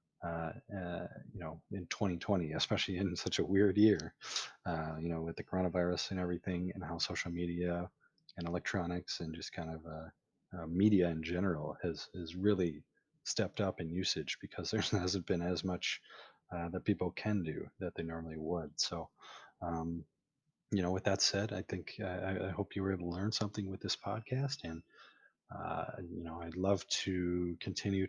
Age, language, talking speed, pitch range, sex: 30-49, English, 185 wpm, 85-100 Hz, male